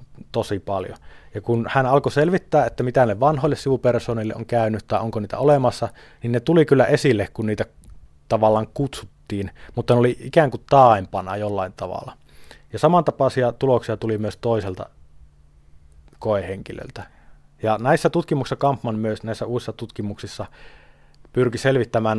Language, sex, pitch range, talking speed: Finnish, male, 100-125 Hz, 140 wpm